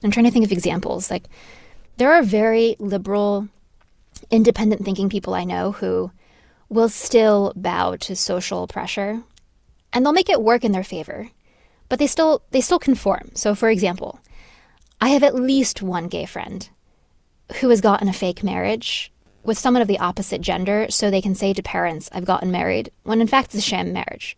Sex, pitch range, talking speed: female, 185-225 Hz, 185 wpm